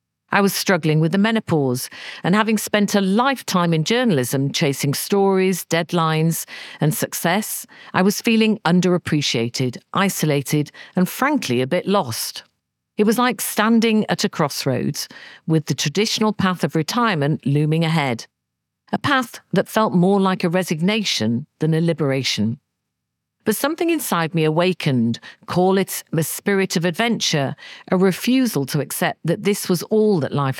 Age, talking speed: 50-69, 145 wpm